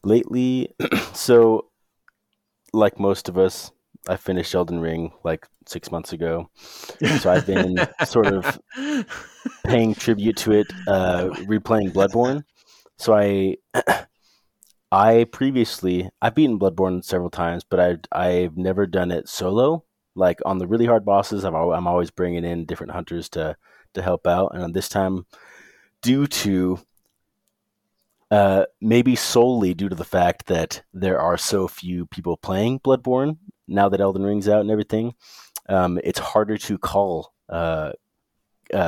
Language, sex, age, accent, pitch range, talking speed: English, male, 30-49, American, 90-110 Hz, 140 wpm